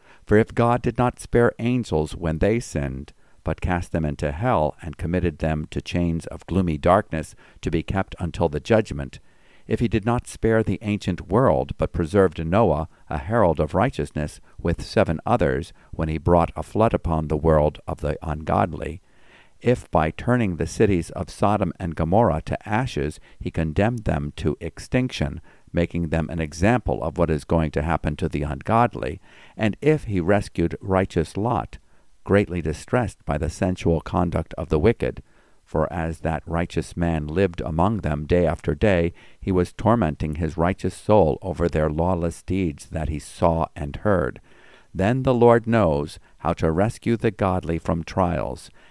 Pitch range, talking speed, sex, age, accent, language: 80-100 Hz, 170 wpm, male, 50-69, American, English